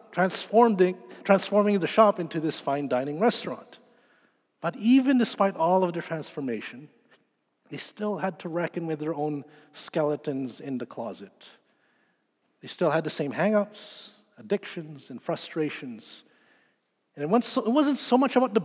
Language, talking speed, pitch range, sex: English, 140 wpm, 155-210 Hz, male